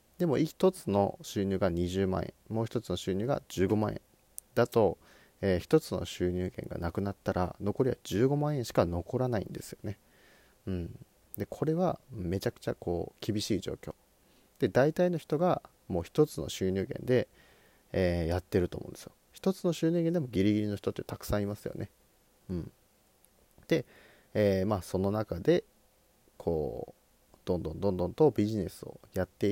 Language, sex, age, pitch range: Japanese, male, 30-49, 95-125 Hz